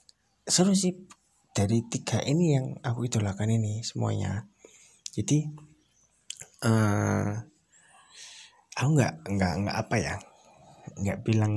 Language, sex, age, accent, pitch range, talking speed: Indonesian, male, 20-39, native, 100-150 Hz, 105 wpm